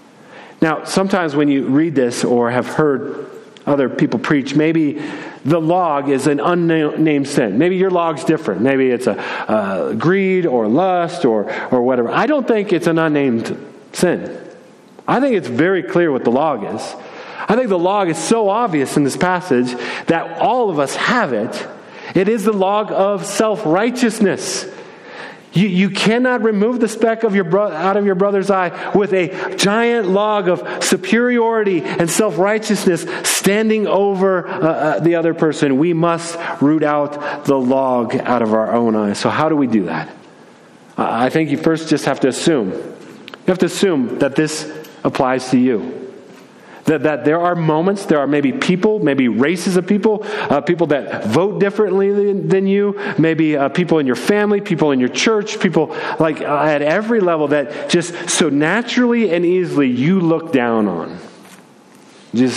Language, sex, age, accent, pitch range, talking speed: English, male, 40-59, American, 145-195 Hz, 175 wpm